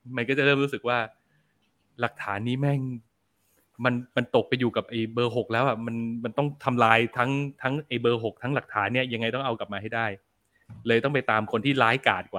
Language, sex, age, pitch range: Thai, male, 20-39, 110-145 Hz